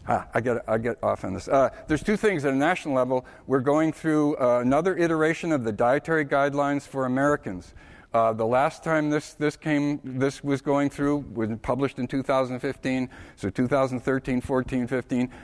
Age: 60-79